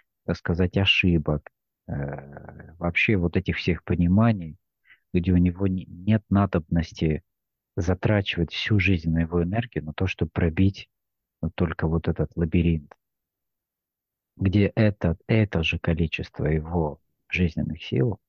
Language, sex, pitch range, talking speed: Russian, male, 80-95 Hz, 110 wpm